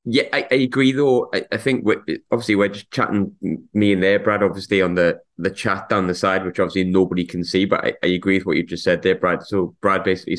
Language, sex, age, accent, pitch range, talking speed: English, male, 20-39, British, 90-100 Hz, 255 wpm